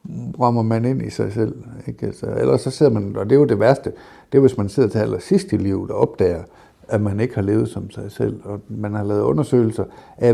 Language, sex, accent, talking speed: Danish, male, native, 245 wpm